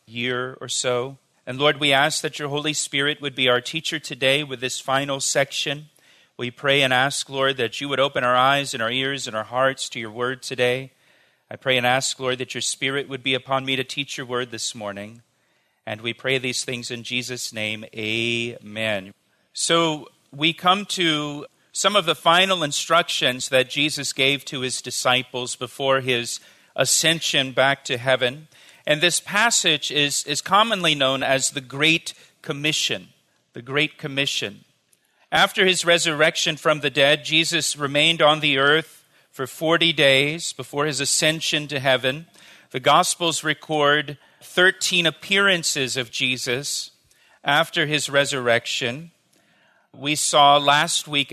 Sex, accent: male, American